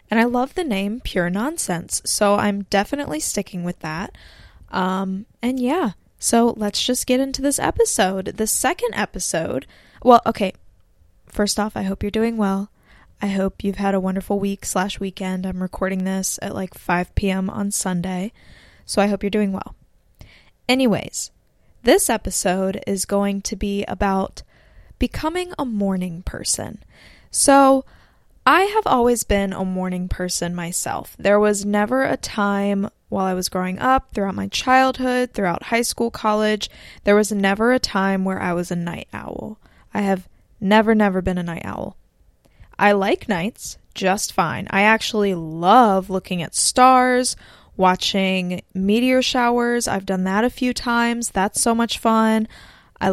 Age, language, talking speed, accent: 10-29, English, 160 wpm, American